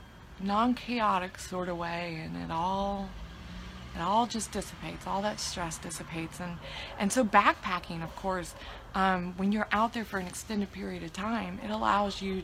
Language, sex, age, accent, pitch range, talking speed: English, female, 20-39, American, 165-205 Hz, 170 wpm